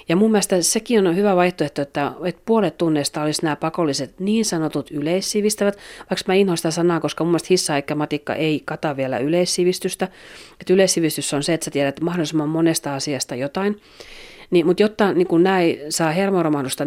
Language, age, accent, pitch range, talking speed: Finnish, 40-59, native, 150-210 Hz, 180 wpm